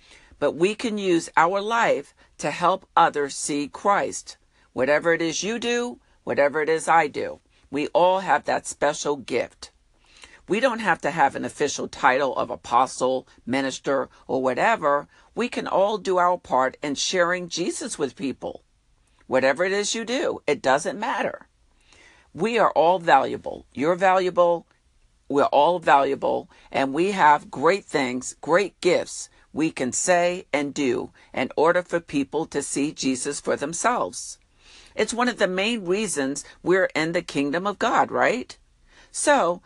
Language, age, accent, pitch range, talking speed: English, 50-69, American, 145-200 Hz, 155 wpm